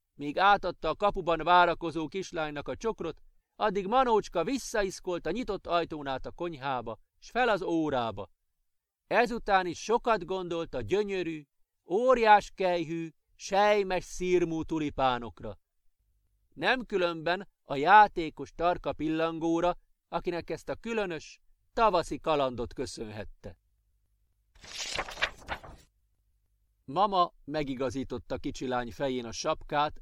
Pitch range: 130-200 Hz